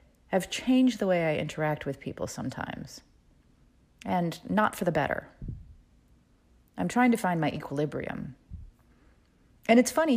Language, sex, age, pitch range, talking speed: English, female, 40-59, 135-180 Hz, 135 wpm